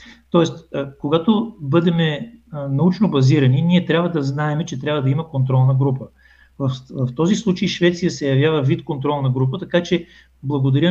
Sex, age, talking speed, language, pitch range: male, 40-59, 150 wpm, Bulgarian, 135-170 Hz